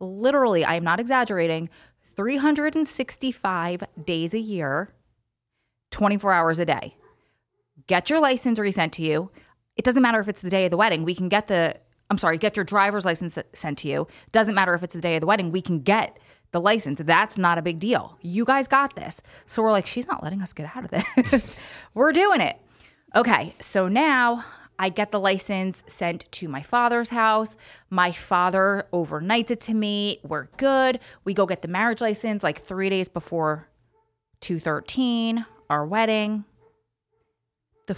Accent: American